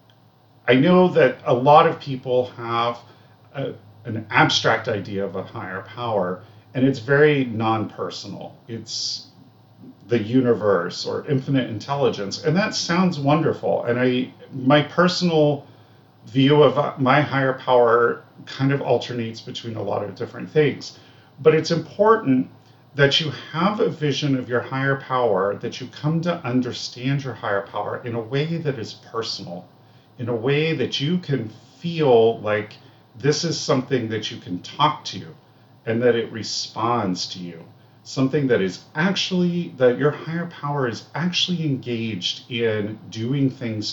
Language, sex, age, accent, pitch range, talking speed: English, male, 40-59, American, 115-145 Hz, 150 wpm